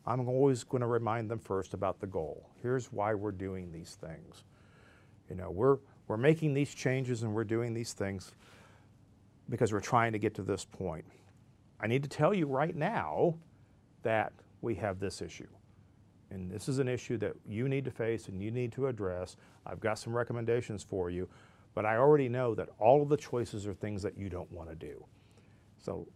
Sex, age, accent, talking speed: male, 50-69, American, 200 wpm